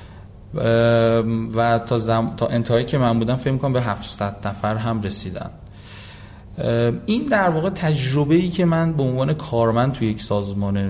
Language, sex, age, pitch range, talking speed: Persian, male, 30-49, 105-140 Hz, 155 wpm